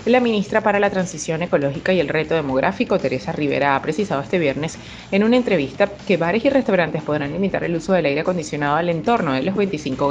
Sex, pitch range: female, 155-200 Hz